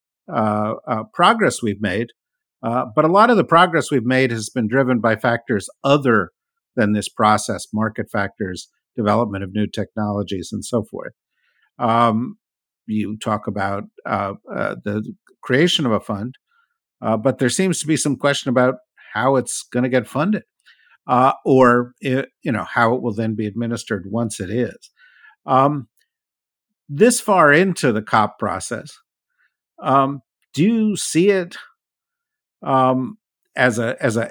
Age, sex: 50-69, male